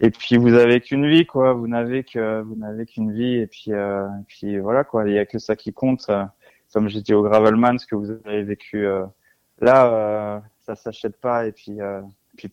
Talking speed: 235 wpm